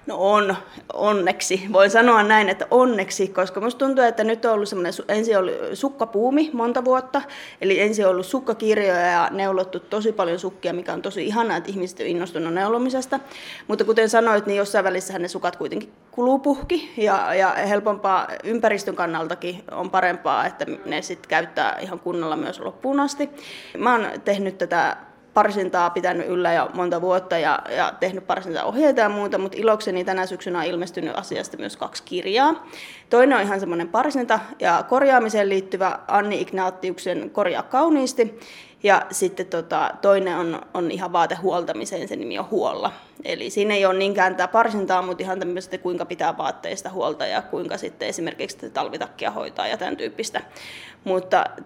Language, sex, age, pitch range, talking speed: Finnish, female, 30-49, 185-235 Hz, 160 wpm